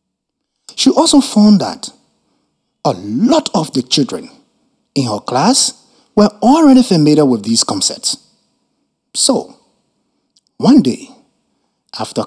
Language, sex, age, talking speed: English, male, 60-79, 110 wpm